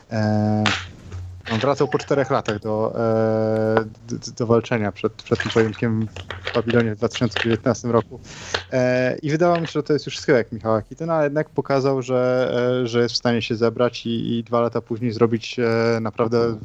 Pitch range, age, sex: 110-120 Hz, 20-39, male